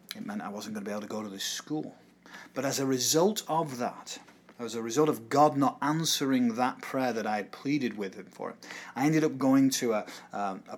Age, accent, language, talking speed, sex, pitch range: 30-49, British, English, 245 wpm, male, 120-155 Hz